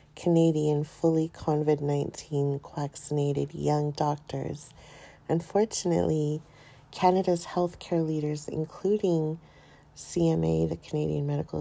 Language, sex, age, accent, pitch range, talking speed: English, female, 40-59, American, 145-175 Hz, 80 wpm